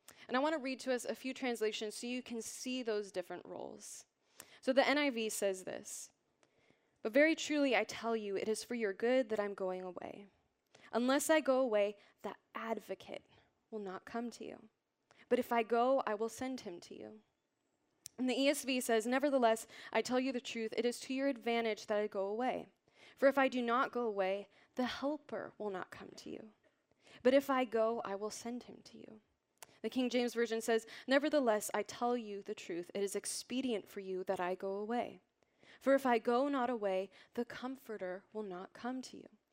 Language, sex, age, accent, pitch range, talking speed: English, female, 20-39, American, 210-255 Hz, 205 wpm